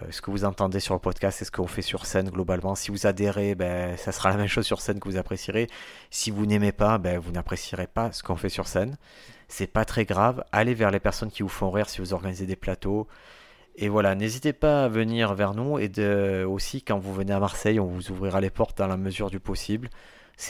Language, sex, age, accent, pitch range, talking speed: French, male, 30-49, French, 95-110 Hz, 250 wpm